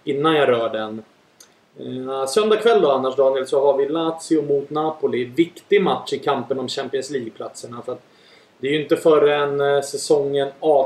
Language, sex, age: English, male, 30-49